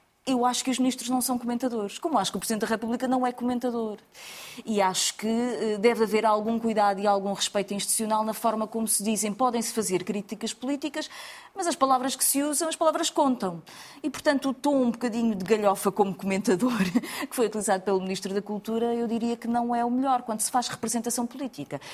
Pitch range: 210-270 Hz